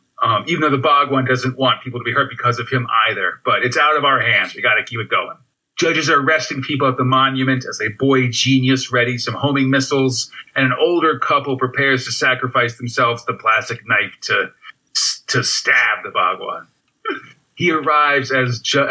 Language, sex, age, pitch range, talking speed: English, male, 40-59, 125-140 Hz, 195 wpm